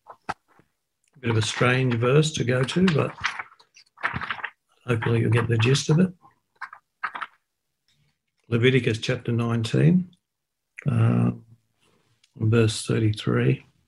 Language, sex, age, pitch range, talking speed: English, male, 50-69, 115-130 Hz, 100 wpm